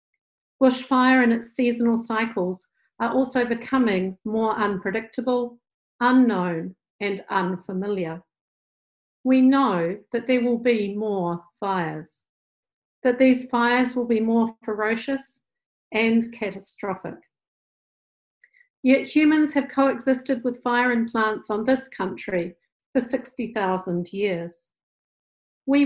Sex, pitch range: female, 205-255 Hz